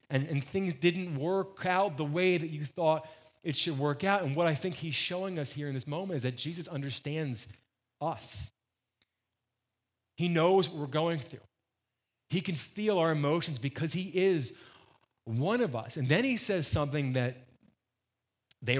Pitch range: 125-170 Hz